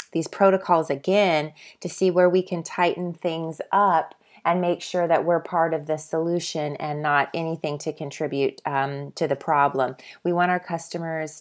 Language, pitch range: English, 155-190 Hz